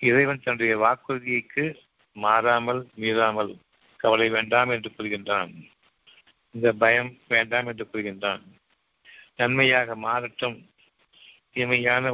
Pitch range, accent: 110-125 Hz, native